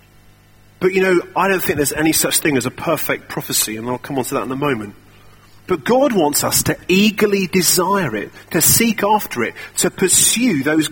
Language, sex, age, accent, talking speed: English, male, 40-59, British, 210 wpm